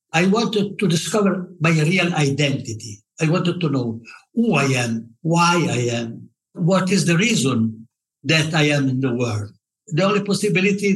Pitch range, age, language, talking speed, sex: 145-190 Hz, 60-79, Italian, 165 wpm, male